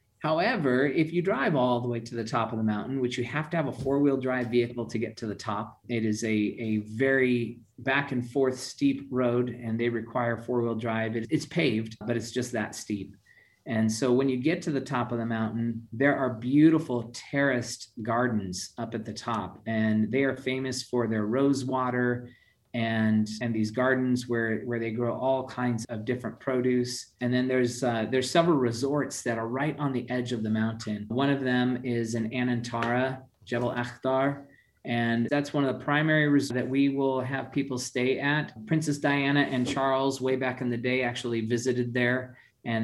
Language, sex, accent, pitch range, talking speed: English, male, American, 115-130 Hz, 200 wpm